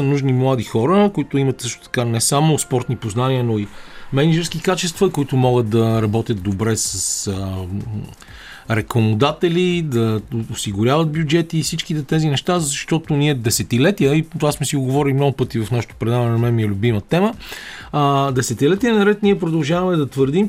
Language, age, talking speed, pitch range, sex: Bulgarian, 40-59, 165 wpm, 125-165 Hz, male